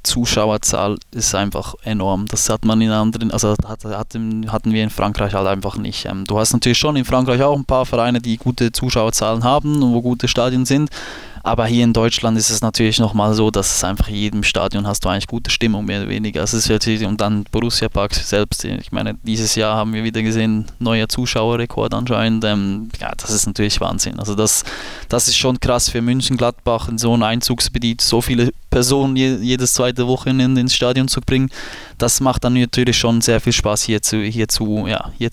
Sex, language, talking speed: male, German, 210 wpm